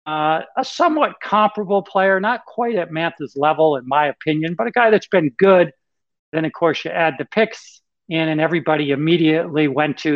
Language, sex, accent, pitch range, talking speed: English, male, American, 140-160 Hz, 190 wpm